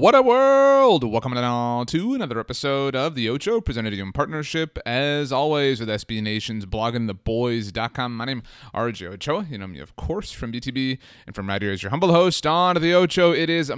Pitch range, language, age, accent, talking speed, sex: 110-130 Hz, English, 30-49, American, 215 wpm, male